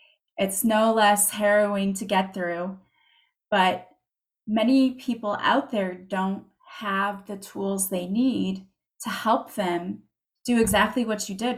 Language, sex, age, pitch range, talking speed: English, female, 20-39, 185-215 Hz, 135 wpm